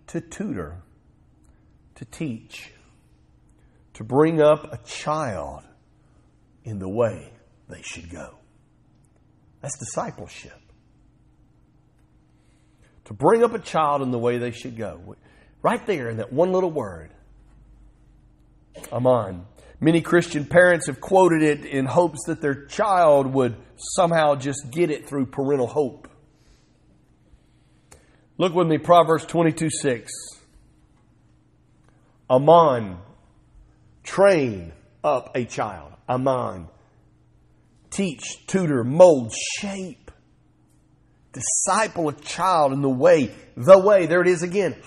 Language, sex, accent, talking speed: English, male, American, 110 wpm